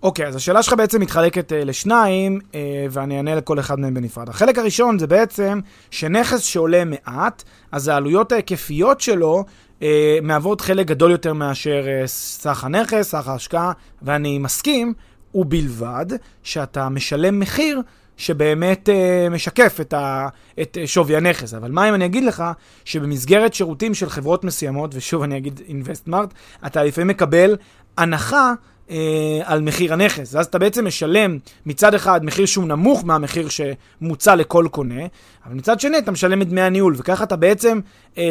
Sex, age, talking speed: male, 30-49, 155 wpm